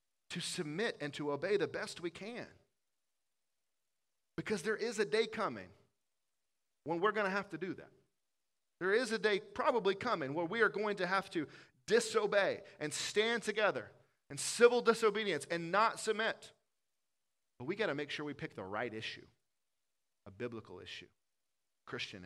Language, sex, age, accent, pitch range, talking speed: English, male, 40-59, American, 135-195 Hz, 165 wpm